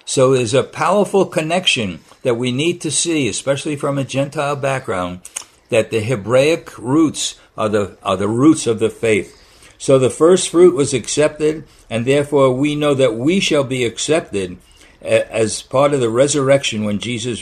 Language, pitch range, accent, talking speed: English, 115-155 Hz, American, 165 wpm